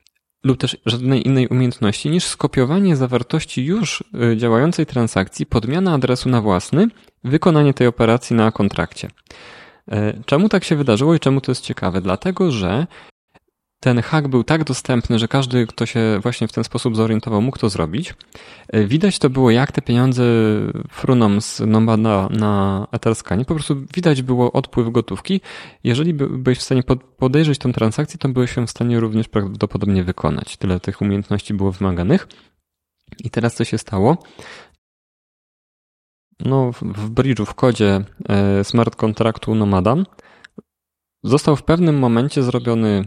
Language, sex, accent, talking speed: Polish, male, native, 140 wpm